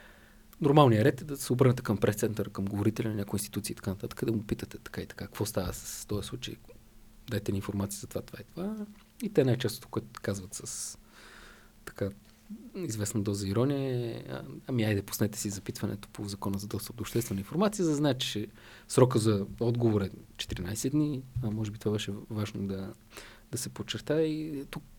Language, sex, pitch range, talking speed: Bulgarian, male, 105-130 Hz, 195 wpm